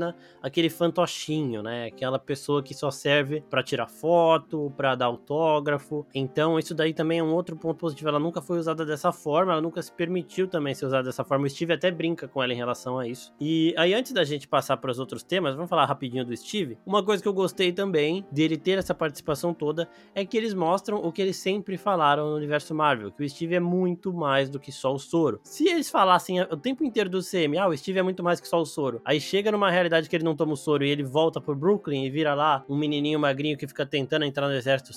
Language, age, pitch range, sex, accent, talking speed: Portuguese, 20-39, 135-175 Hz, male, Brazilian, 240 wpm